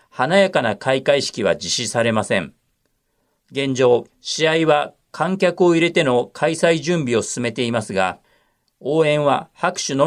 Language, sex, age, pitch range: Japanese, male, 40-59, 125-180 Hz